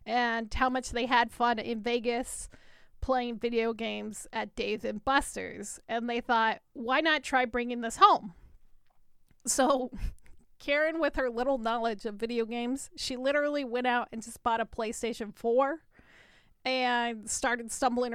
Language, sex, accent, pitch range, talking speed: English, female, American, 230-275 Hz, 150 wpm